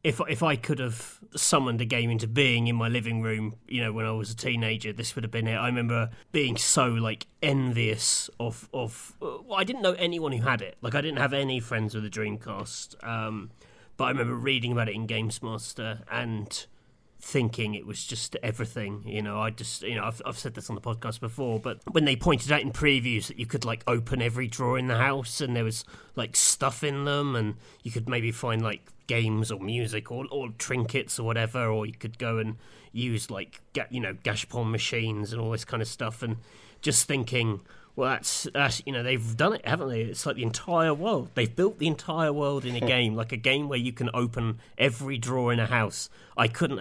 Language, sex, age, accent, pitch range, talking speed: English, male, 30-49, British, 110-130 Hz, 225 wpm